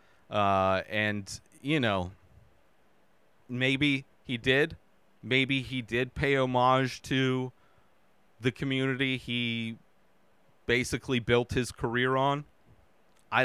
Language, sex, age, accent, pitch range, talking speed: English, male, 30-49, American, 110-140 Hz, 100 wpm